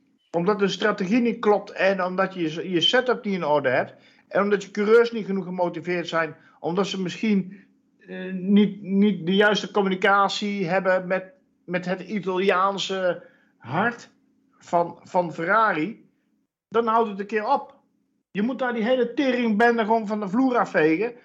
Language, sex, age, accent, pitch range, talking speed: Dutch, male, 50-69, Dutch, 180-235 Hz, 160 wpm